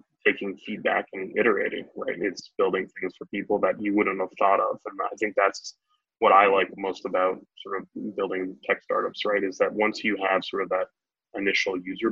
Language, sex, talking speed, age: English, male, 205 wpm, 20-39